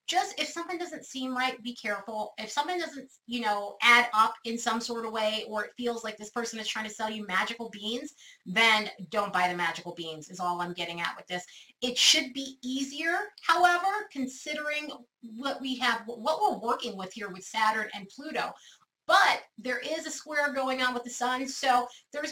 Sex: female